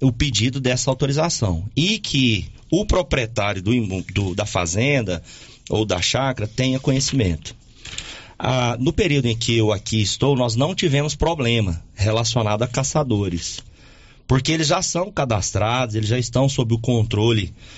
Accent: Brazilian